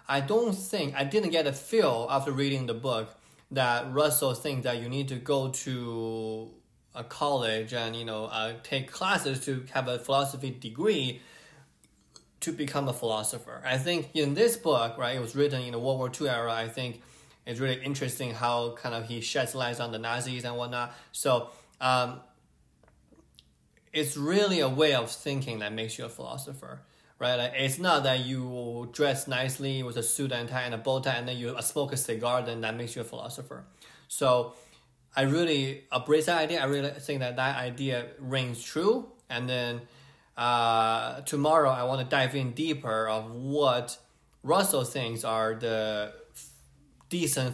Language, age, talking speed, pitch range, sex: English, 20-39, 180 wpm, 115-140 Hz, male